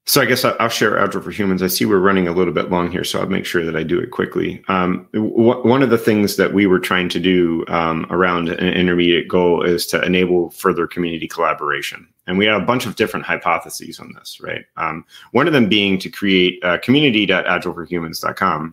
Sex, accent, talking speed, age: male, American, 220 wpm, 30-49